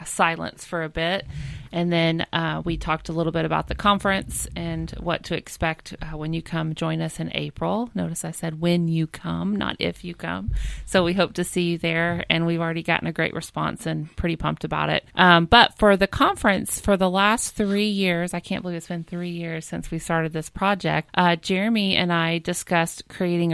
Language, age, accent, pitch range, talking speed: English, 30-49, American, 165-180 Hz, 215 wpm